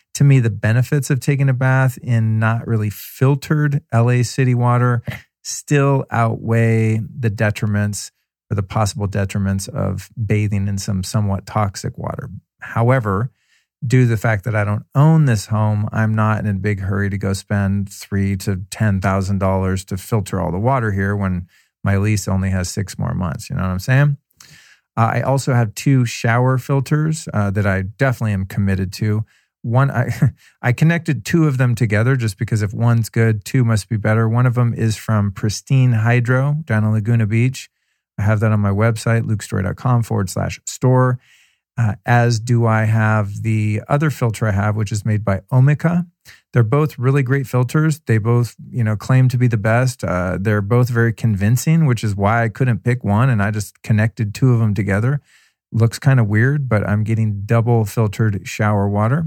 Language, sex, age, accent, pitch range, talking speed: English, male, 40-59, American, 105-125 Hz, 190 wpm